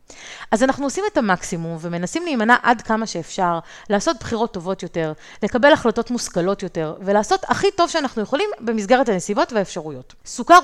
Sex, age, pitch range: female, 30-49, 190-255 Hz